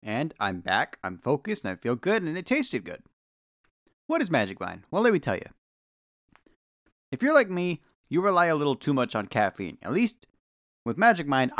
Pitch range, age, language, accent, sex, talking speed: 105-160 Hz, 40-59, English, American, male, 200 wpm